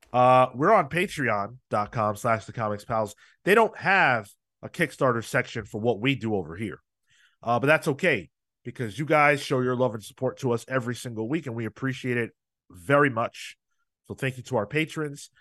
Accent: American